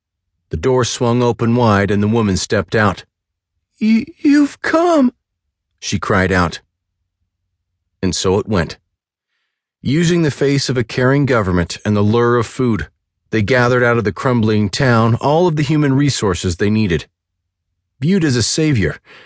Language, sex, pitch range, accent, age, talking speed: English, male, 90-120 Hz, American, 40-59, 155 wpm